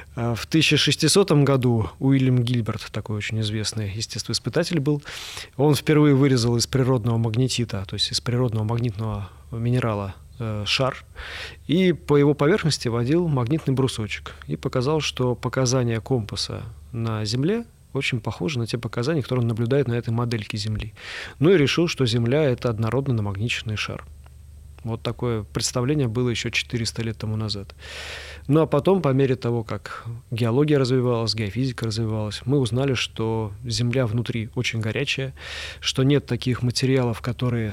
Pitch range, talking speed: 110-130 Hz, 145 wpm